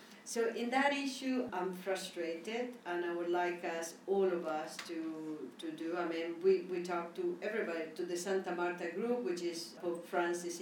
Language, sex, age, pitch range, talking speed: English, female, 50-69, 175-205 Hz, 185 wpm